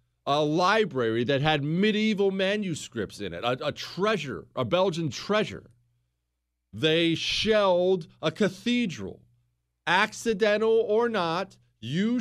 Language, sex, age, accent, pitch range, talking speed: English, male, 40-59, American, 110-180 Hz, 110 wpm